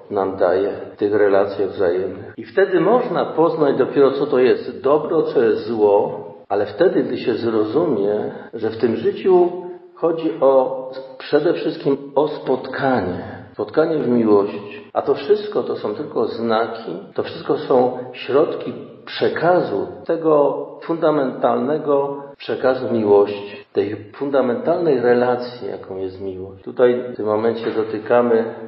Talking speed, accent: 130 wpm, native